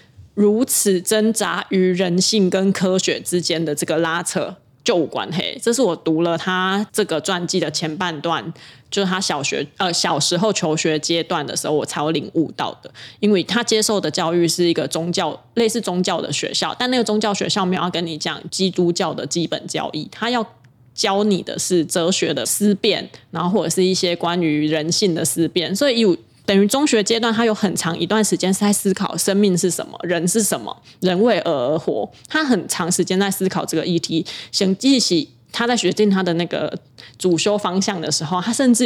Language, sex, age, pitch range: Chinese, female, 20-39, 170-210 Hz